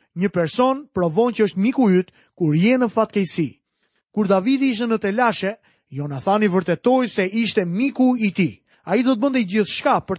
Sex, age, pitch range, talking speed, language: male, 30-49, 180-235 Hz, 155 wpm, English